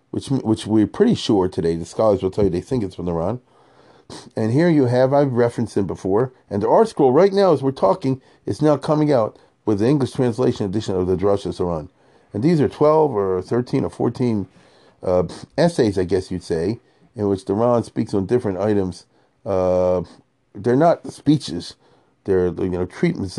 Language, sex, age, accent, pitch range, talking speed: English, male, 40-59, American, 95-130 Hz, 200 wpm